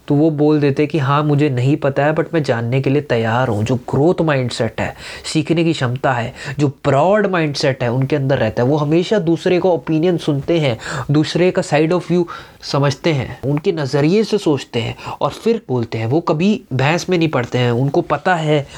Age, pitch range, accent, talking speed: 20-39, 130-165 Hz, native, 220 wpm